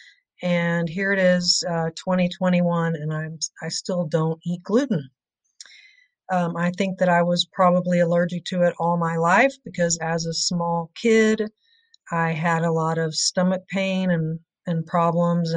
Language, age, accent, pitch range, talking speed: English, 40-59, American, 165-195 Hz, 160 wpm